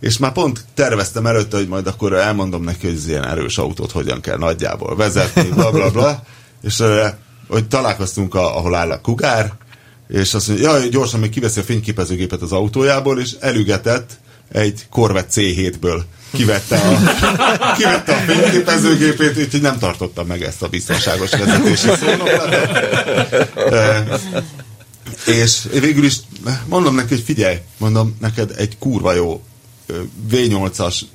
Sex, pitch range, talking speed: male, 95-120 Hz, 145 wpm